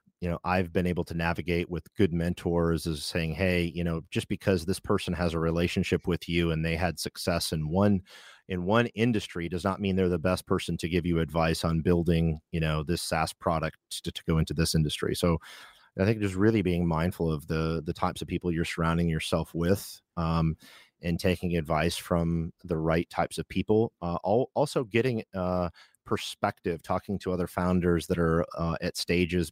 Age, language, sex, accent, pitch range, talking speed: 40-59, English, male, American, 80-95 Hz, 195 wpm